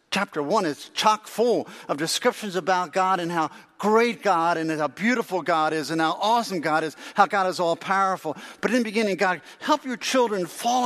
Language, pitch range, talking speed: English, 165-220 Hz, 205 wpm